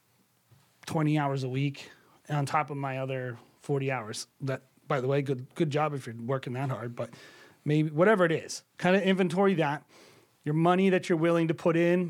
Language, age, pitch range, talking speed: English, 30-49, 140-175 Hz, 200 wpm